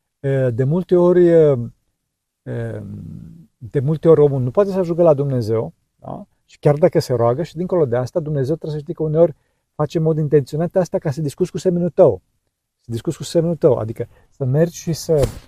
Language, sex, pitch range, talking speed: Romanian, male, 130-175 Hz, 195 wpm